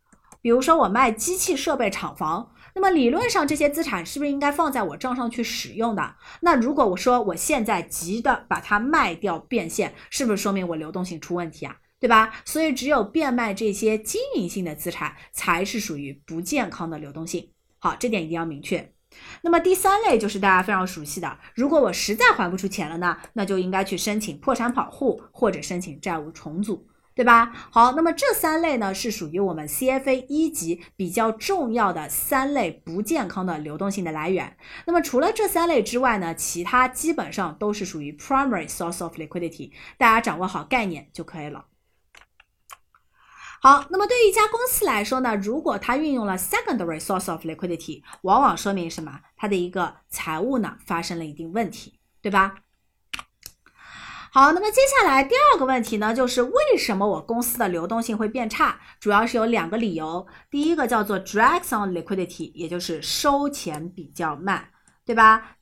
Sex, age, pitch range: female, 20-39, 175-265 Hz